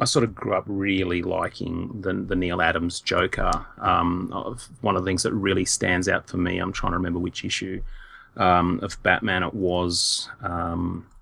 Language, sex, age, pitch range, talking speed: English, male, 30-49, 90-105 Hz, 195 wpm